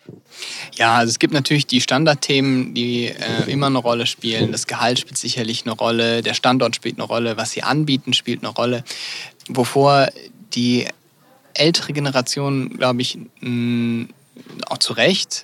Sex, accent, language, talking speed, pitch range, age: male, German, German, 150 wpm, 115-140 Hz, 20-39